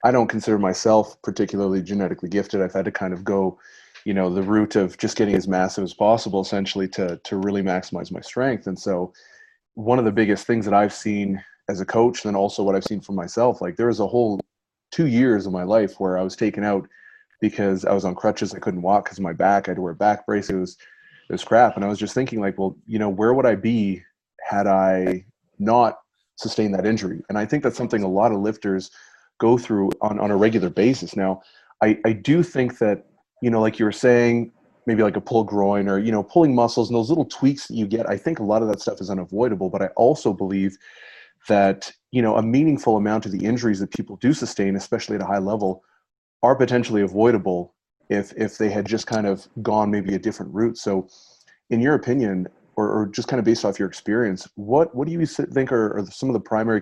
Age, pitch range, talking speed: 30-49, 95-115 Hz, 235 wpm